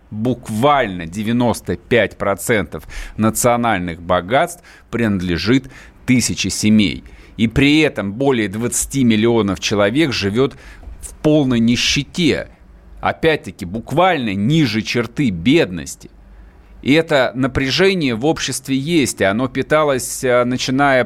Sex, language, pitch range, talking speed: male, Russian, 105-140 Hz, 90 wpm